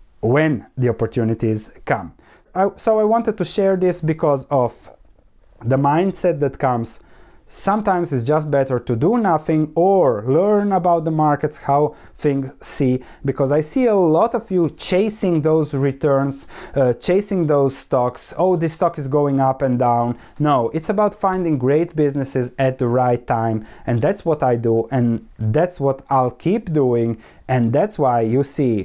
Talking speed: 165 wpm